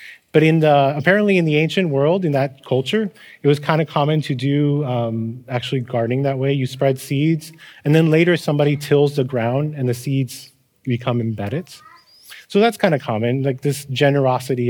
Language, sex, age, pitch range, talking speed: English, male, 30-49, 130-160 Hz, 190 wpm